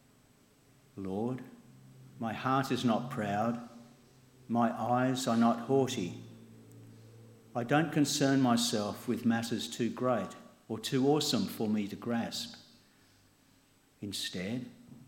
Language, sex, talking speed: English, male, 105 wpm